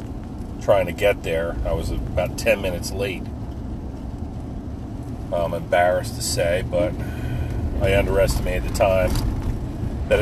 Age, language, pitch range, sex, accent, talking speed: 40-59, English, 95-110 Hz, male, American, 115 wpm